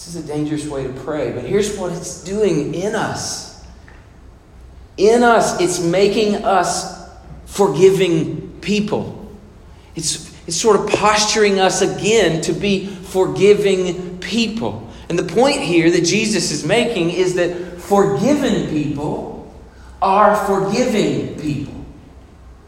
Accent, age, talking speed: American, 40-59, 125 wpm